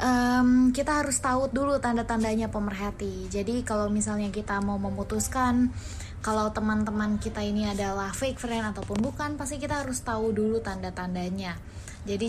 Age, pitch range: 20-39, 205-250 Hz